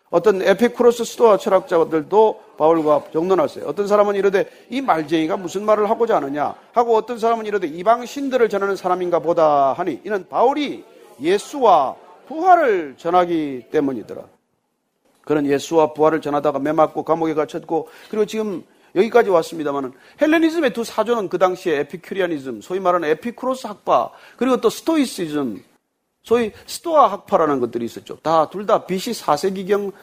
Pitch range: 165-260 Hz